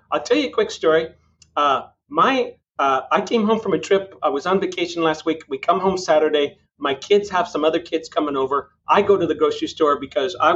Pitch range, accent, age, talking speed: 170-235 Hz, American, 40-59, 235 wpm